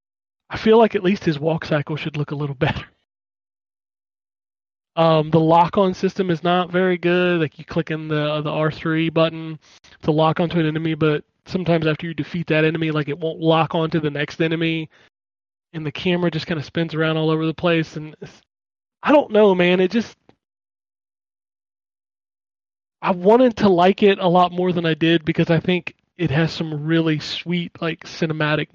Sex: male